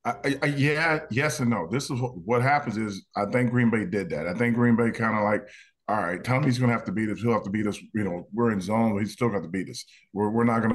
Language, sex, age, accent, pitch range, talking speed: English, male, 40-59, American, 105-125 Hz, 305 wpm